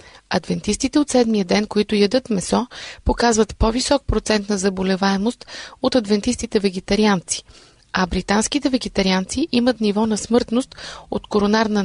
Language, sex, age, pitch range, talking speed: Bulgarian, female, 30-49, 195-235 Hz, 120 wpm